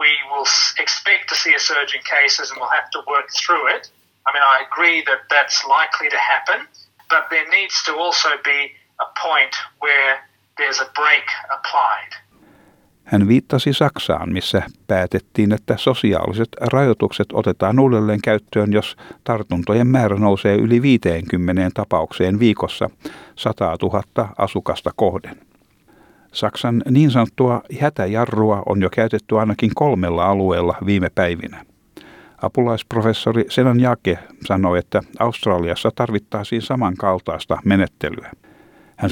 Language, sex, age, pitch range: Finnish, male, 60-79, 95-120 Hz